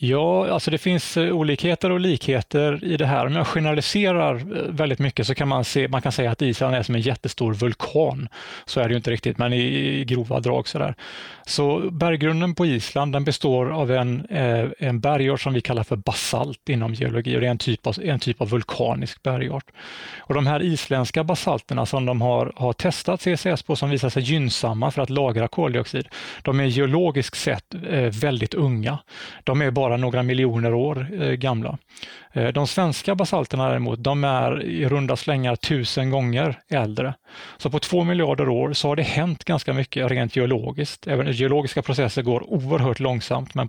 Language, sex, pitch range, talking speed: Swedish, male, 125-150 Hz, 185 wpm